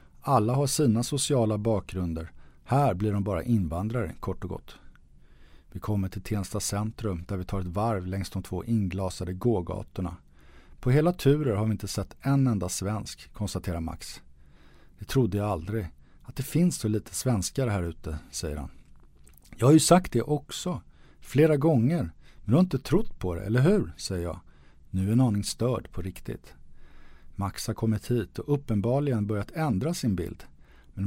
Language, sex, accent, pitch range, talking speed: English, male, Swedish, 85-125 Hz, 170 wpm